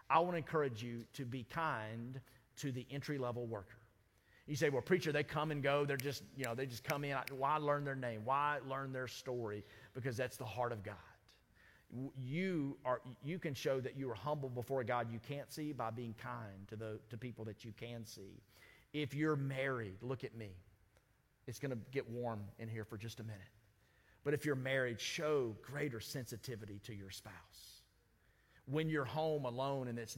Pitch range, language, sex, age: 110-140 Hz, English, male, 40-59